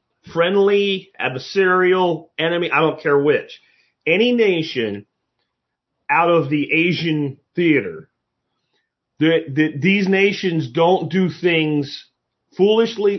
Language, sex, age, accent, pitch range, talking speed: English, male, 40-59, American, 150-205 Hz, 100 wpm